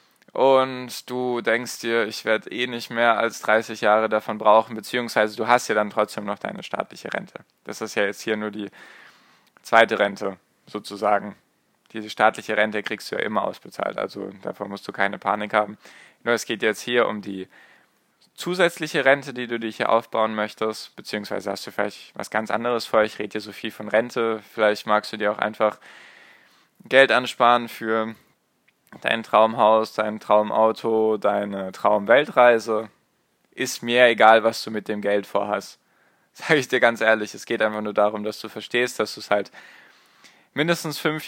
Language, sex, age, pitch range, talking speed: German, male, 10-29, 105-120 Hz, 175 wpm